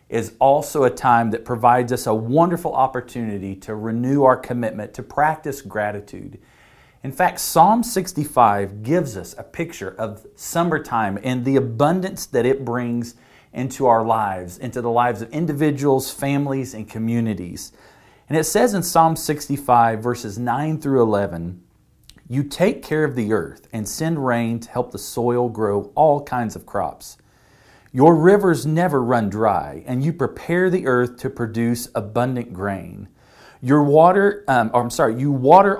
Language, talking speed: English, 160 wpm